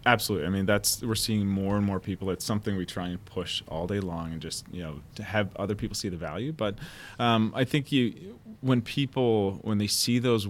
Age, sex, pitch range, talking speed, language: 30-49, male, 90-110 Hz, 235 wpm, English